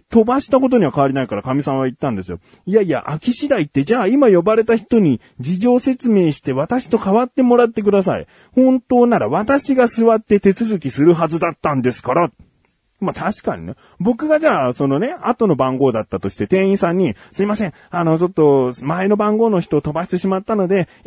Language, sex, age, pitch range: Japanese, male, 40-59, 140-230 Hz